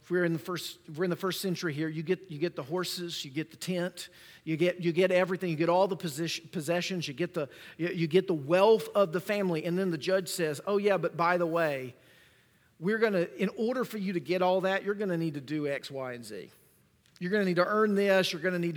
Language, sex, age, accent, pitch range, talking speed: English, male, 40-59, American, 170-210 Hz, 265 wpm